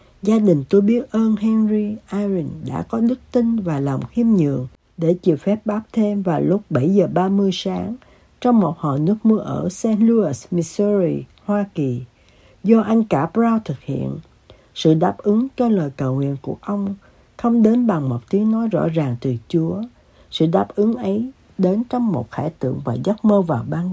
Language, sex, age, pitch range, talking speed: Vietnamese, female, 60-79, 160-225 Hz, 190 wpm